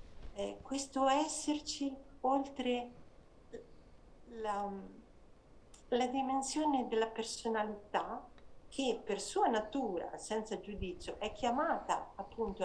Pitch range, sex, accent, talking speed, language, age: 195-250 Hz, female, native, 80 wpm, Italian, 50-69